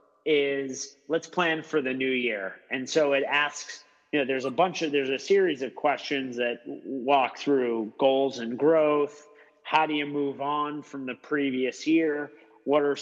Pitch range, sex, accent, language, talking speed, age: 130-150 Hz, male, American, English, 180 wpm, 30-49